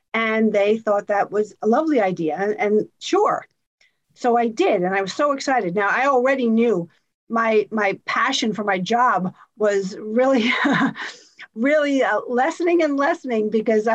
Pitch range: 210-260 Hz